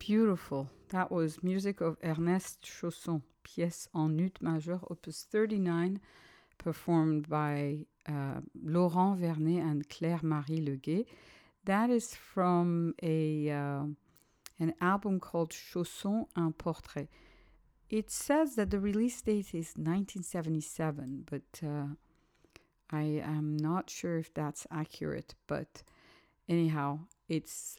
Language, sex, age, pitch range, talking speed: English, female, 50-69, 155-185 Hz, 125 wpm